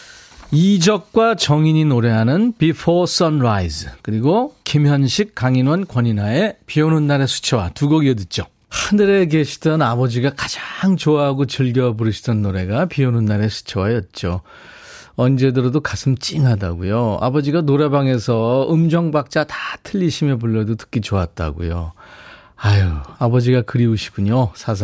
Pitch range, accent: 105-150 Hz, native